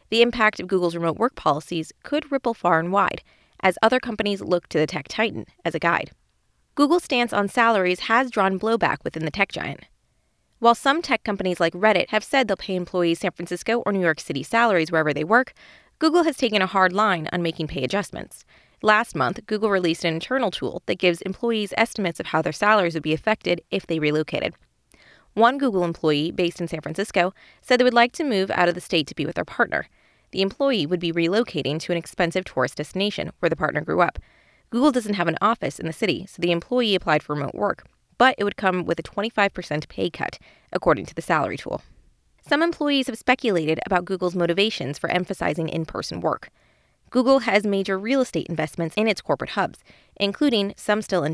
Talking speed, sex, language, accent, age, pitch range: 205 wpm, female, English, American, 20-39, 170-225 Hz